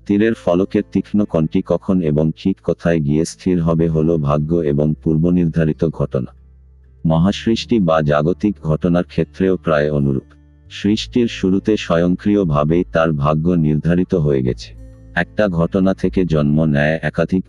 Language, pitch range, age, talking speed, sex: Bengali, 75-95 Hz, 50-69, 125 wpm, male